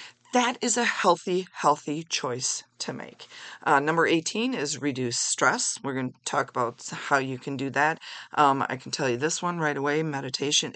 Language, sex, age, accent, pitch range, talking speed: English, female, 40-59, American, 135-175 Hz, 190 wpm